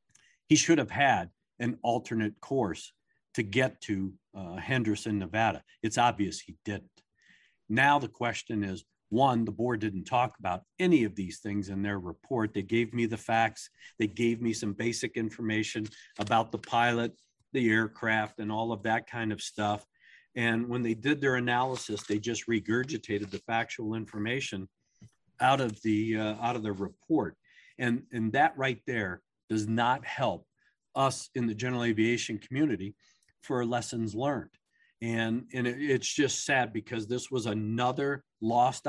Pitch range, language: 110-125 Hz, English